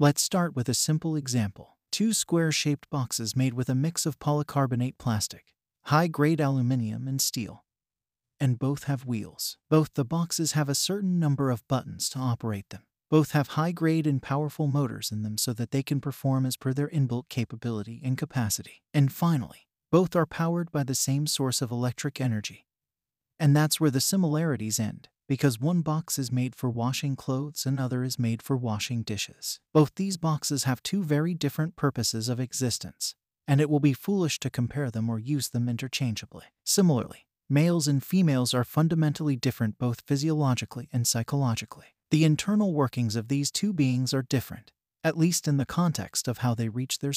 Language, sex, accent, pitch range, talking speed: English, male, American, 125-155 Hz, 180 wpm